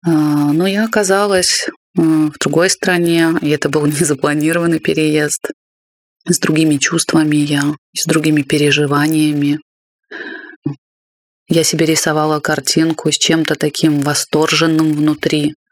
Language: Russian